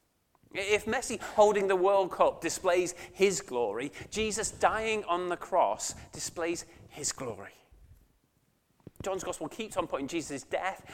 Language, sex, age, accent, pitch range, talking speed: English, male, 30-49, British, 140-200 Hz, 130 wpm